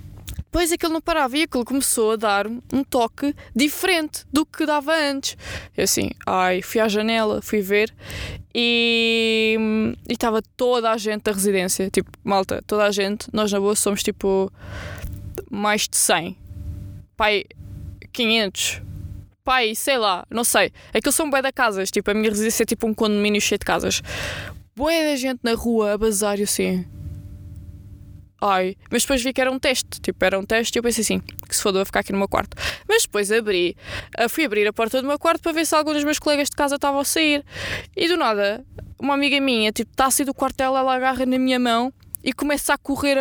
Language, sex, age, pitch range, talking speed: Portuguese, female, 20-39, 200-270 Hz, 210 wpm